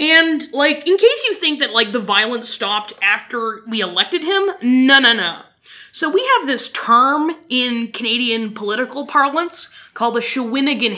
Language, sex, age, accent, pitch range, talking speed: English, female, 20-39, American, 220-325 Hz, 165 wpm